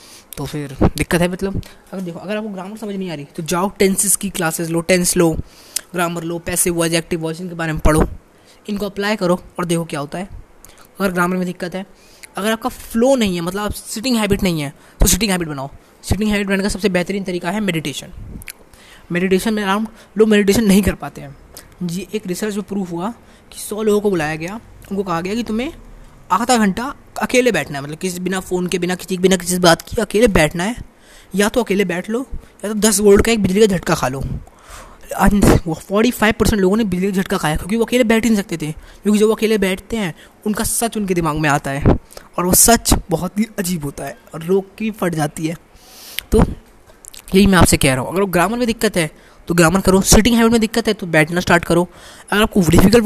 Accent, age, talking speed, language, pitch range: native, 20-39, 225 wpm, Hindi, 170-215 Hz